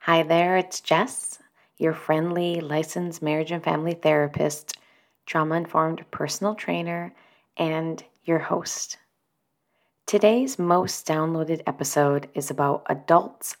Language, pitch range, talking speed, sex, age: English, 145-165 Hz, 105 wpm, female, 30-49